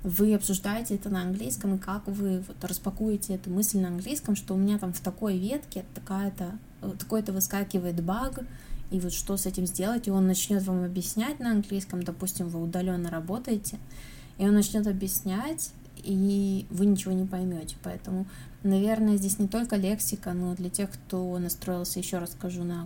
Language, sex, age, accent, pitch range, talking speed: Russian, female, 20-39, native, 180-210 Hz, 170 wpm